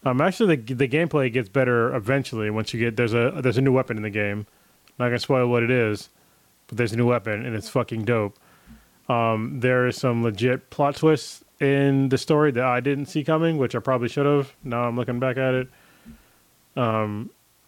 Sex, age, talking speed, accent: male, 20-39, 210 wpm, American